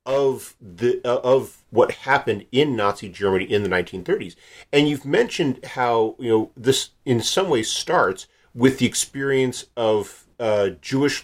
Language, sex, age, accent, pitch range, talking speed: English, male, 50-69, American, 100-160 Hz, 155 wpm